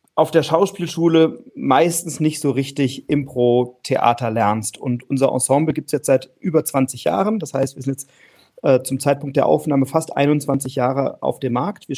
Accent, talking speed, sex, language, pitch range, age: German, 180 wpm, male, German, 130-155 Hz, 40-59